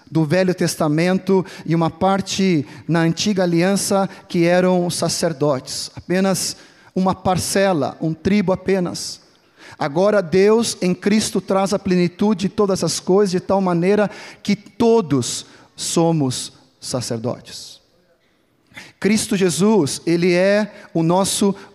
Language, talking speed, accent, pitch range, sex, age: Portuguese, 115 wpm, Brazilian, 160-200 Hz, male, 40-59